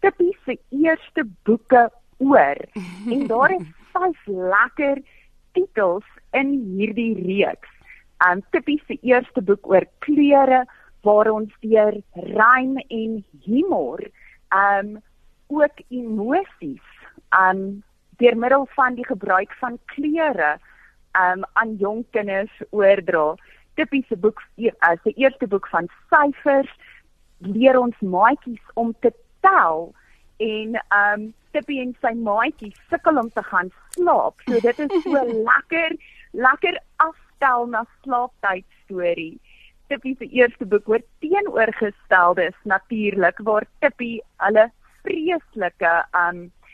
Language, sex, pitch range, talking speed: English, female, 200-275 Hz, 120 wpm